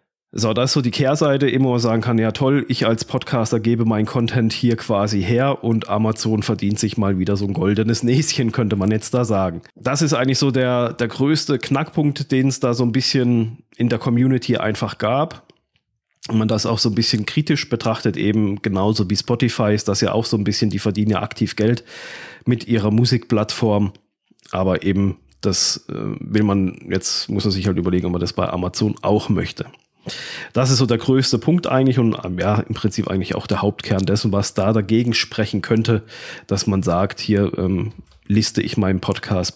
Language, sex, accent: German, male, German